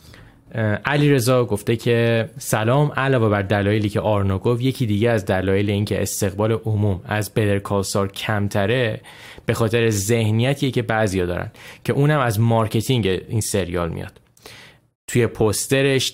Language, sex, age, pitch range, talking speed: Persian, male, 10-29, 100-125 Hz, 145 wpm